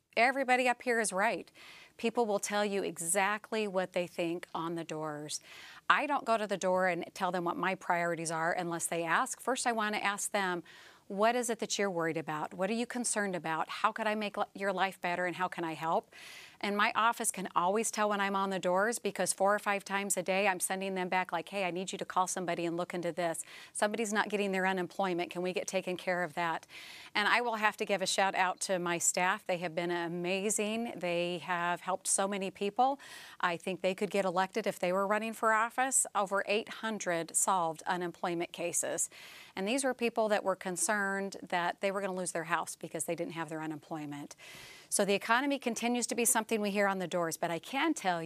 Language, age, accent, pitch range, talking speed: English, 40-59, American, 180-220 Hz, 230 wpm